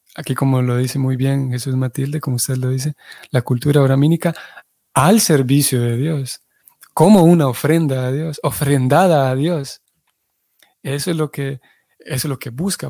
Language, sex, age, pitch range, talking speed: Spanish, male, 30-49, 130-150 Hz, 155 wpm